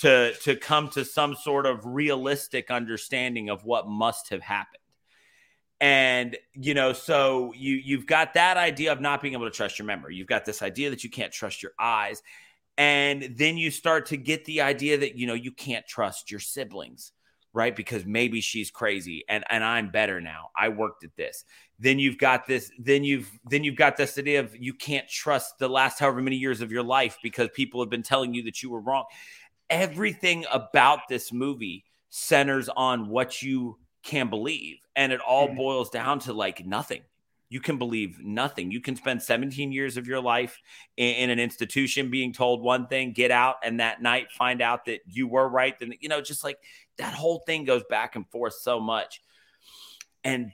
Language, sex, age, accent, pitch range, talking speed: English, male, 30-49, American, 120-140 Hz, 200 wpm